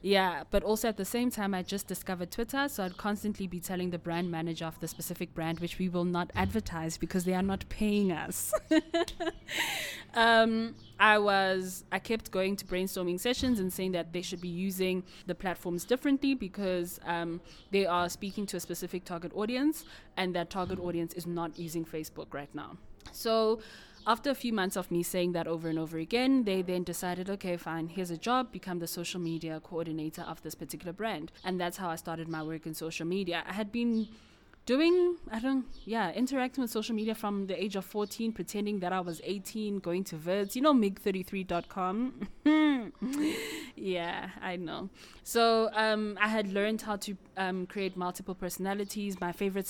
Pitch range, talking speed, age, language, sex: 175-210 Hz, 190 wpm, 20-39, English, female